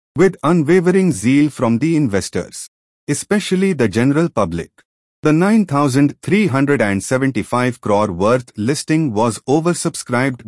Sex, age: male, 30-49